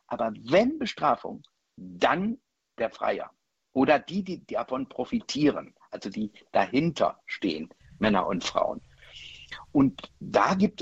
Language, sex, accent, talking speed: German, male, German, 115 wpm